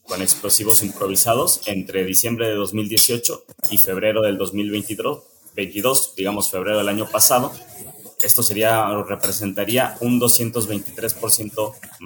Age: 30-49